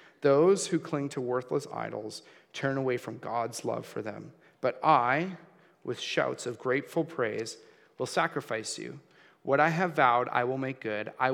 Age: 30-49